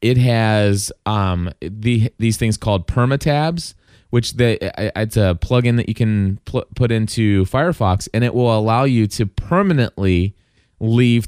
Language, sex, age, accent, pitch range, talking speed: English, male, 20-39, American, 100-125 Hz, 150 wpm